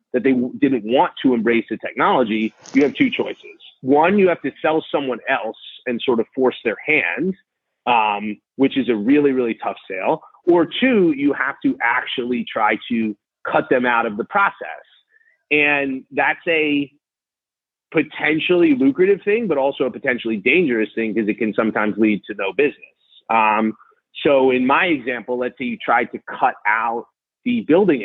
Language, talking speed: English, 175 wpm